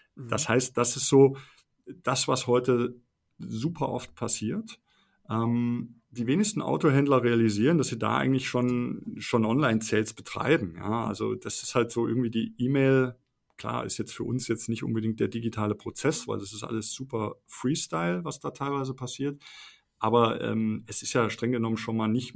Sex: male